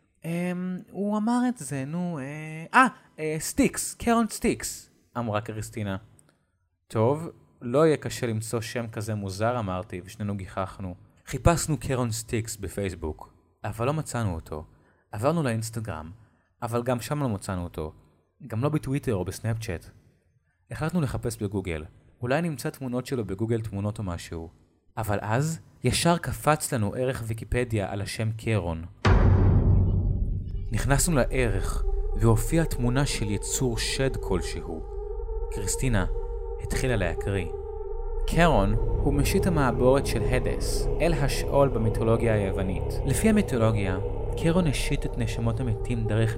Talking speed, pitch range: 120 wpm, 100-140 Hz